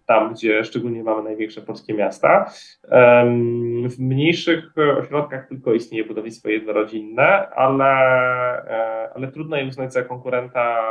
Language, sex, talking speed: Polish, male, 115 wpm